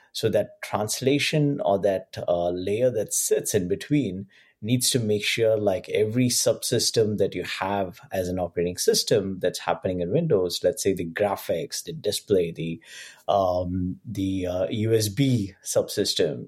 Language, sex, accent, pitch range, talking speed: English, male, Indian, 95-125 Hz, 150 wpm